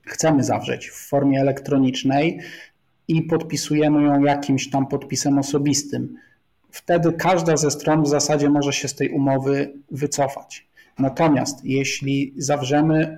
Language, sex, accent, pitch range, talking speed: Polish, male, native, 135-150 Hz, 125 wpm